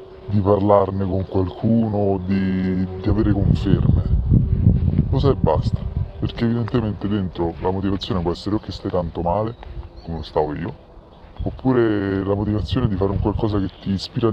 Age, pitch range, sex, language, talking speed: 20-39, 90-115 Hz, female, Italian, 155 wpm